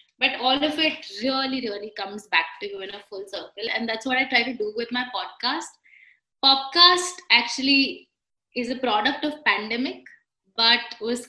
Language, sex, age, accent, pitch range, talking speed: English, female, 20-39, Indian, 215-275 Hz, 175 wpm